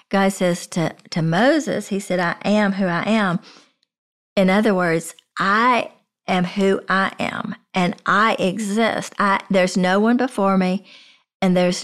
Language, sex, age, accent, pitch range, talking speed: English, female, 40-59, American, 180-220 Hz, 155 wpm